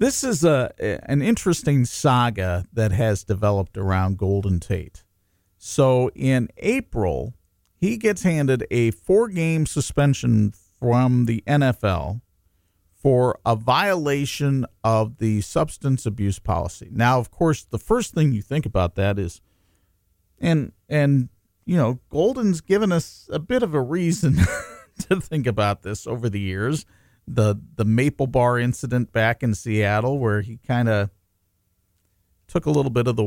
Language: English